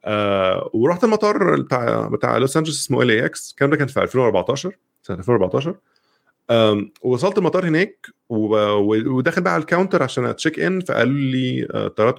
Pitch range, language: 110-160 Hz, Arabic